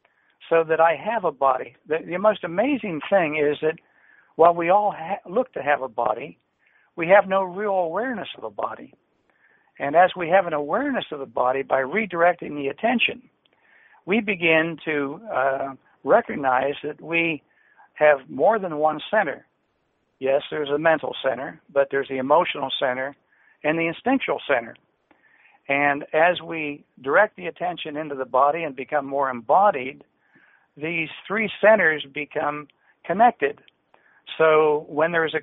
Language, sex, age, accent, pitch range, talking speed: English, male, 60-79, American, 140-175 Hz, 155 wpm